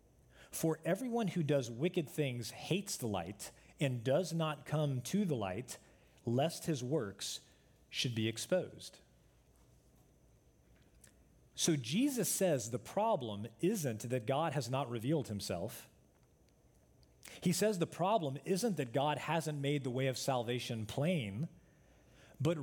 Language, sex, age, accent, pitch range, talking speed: English, male, 40-59, American, 120-165 Hz, 130 wpm